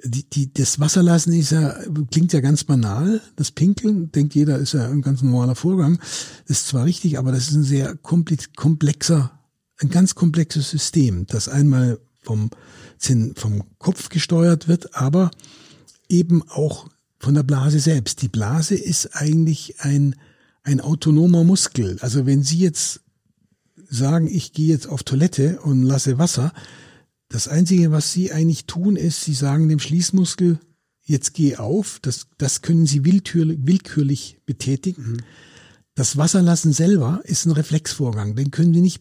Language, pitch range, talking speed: German, 130-165 Hz, 155 wpm